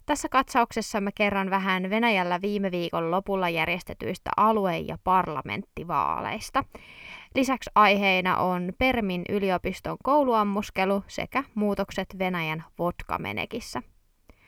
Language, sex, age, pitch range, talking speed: Finnish, female, 20-39, 185-235 Hz, 95 wpm